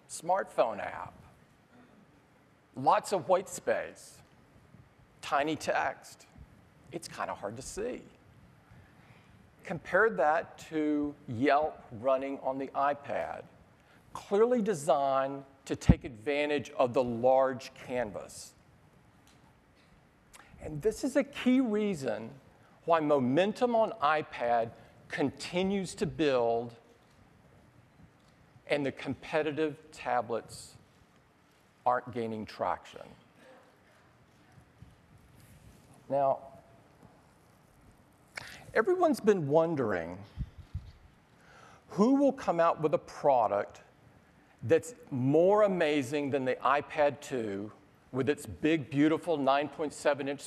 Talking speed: 90 wpm